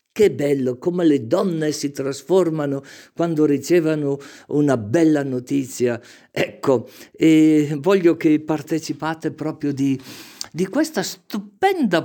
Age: 50-69